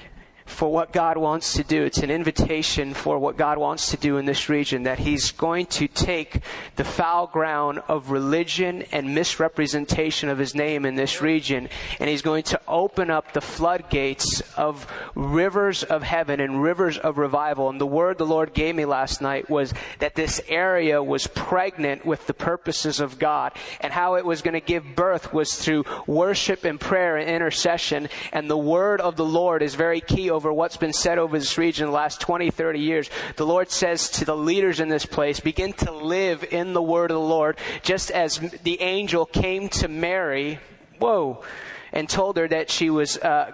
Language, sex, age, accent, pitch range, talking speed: English, male, 30-49, American, 155-175 Hz, 195 wpm